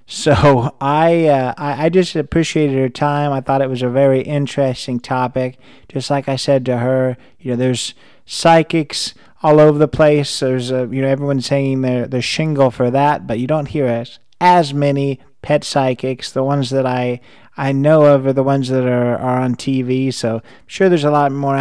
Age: 30-49